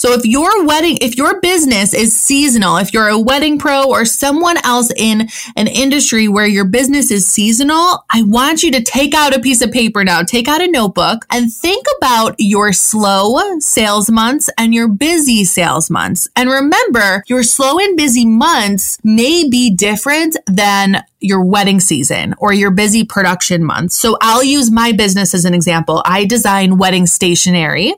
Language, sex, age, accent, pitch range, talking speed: English, female, 20-39, American, 190-250 Hz, 180 wpm